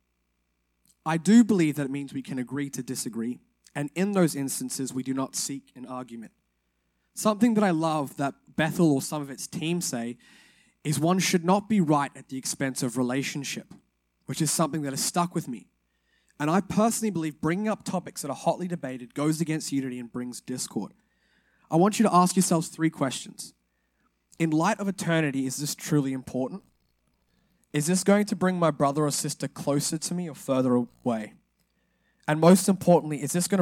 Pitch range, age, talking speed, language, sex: 130-175 Hz, 20-39, 190 wpm, English, male